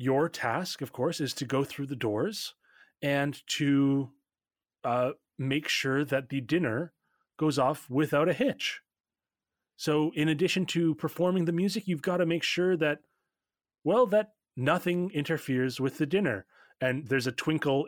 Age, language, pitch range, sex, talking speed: 30-49, English, 125-155 Hz, male, 160 wpm